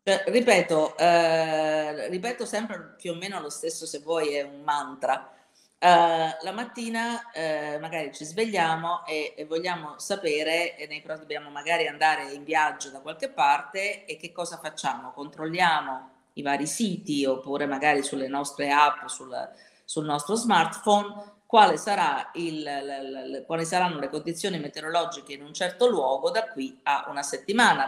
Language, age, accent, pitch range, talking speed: Italian, 40-59, native, 145-200 Hz, 160 wpm